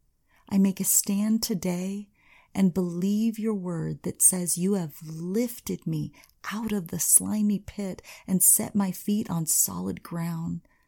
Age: 40-59